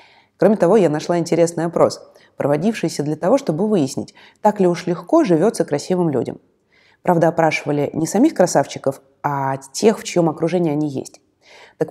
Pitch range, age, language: 150-200 Hz, 20-39, Russian